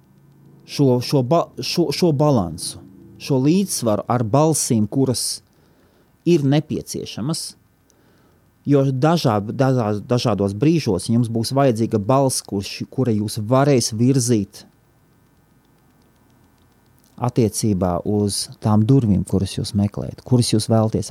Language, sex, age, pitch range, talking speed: English, male, 30-49, 105-145 Hz, 100 wpm